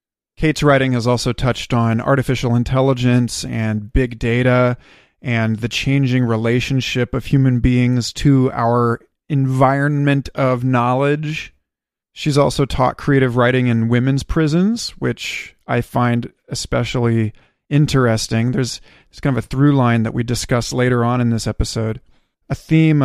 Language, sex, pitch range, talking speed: English, male, 120-140 Hz, 135 wpm